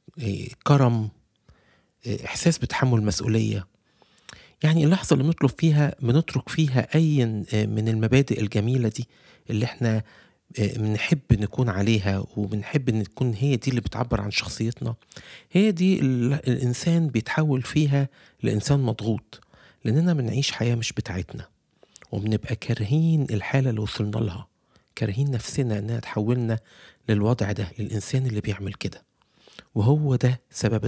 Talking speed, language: 120 wpm, Arabic